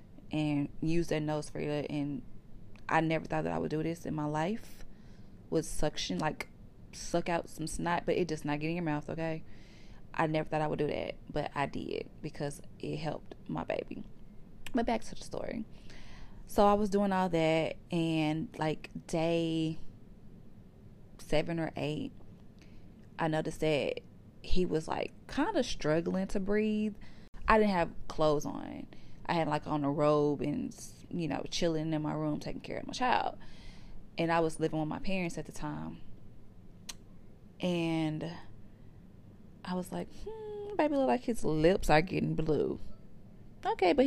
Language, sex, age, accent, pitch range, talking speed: English, female, 20-39, American, 155-210 Hz, 170 wpm